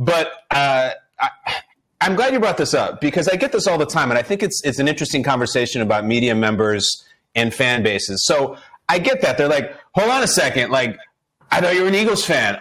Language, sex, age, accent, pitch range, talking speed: English, male, 30-49, American, 135-195 Hz, 220 wpm